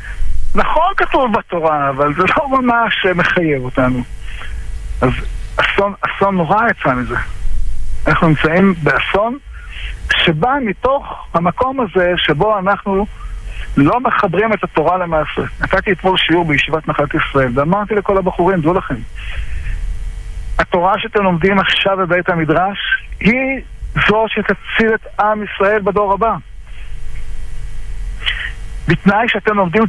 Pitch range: 150-225 Hz